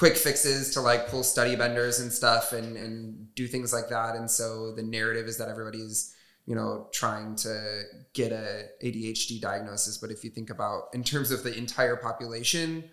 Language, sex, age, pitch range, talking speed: English, male, 20-39, 110-130 Hz, 190 wpm